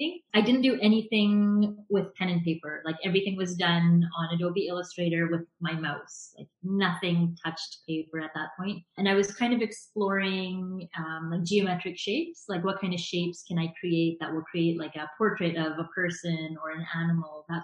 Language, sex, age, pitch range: English, female, 30-49, 170-210 Hz